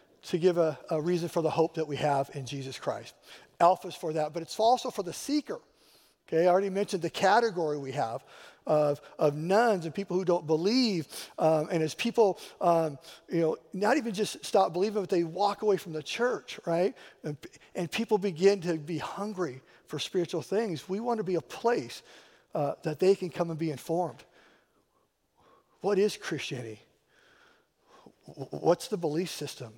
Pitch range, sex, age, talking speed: 150-190 Hz, male, 50-69, 180 wpm